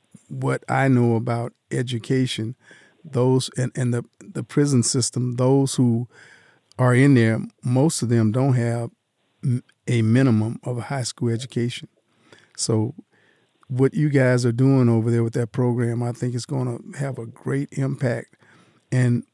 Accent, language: American, English